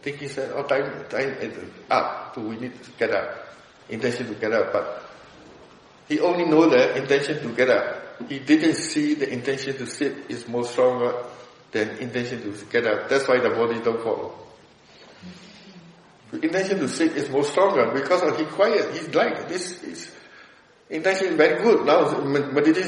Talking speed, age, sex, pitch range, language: 180 wpm, 60-79, male, 140-195 Hz, English